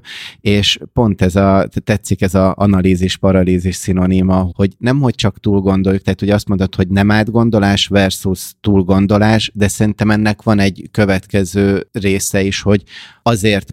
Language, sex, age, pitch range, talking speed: Hungarian, male, 30-49, 95-105 Hz, 145 wpm